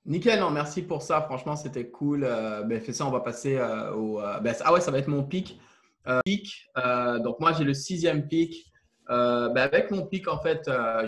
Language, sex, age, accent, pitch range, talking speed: French, male, 20-39, French, 130-155 Hz, 235 wpm